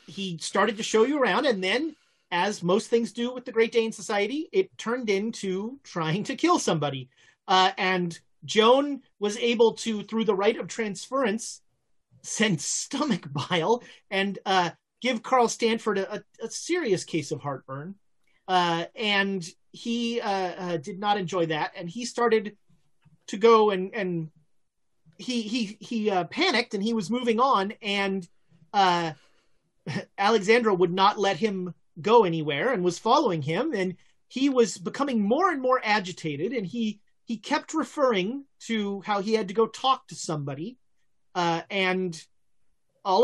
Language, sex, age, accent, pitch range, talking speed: English, male, 30-49, American, 180-235 Hz, 155 wpm